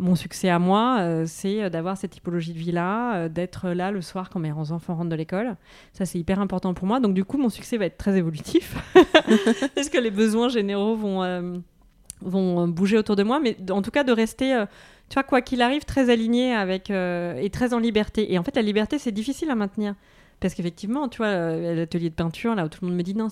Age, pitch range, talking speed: 30-49, 175-225 Hz, 240 wpm